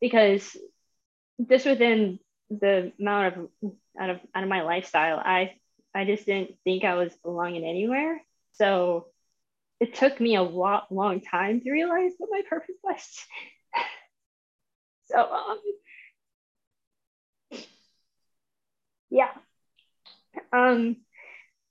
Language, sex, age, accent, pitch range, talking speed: English, female, 10-29, American, 185-235 Hz, 110 wpm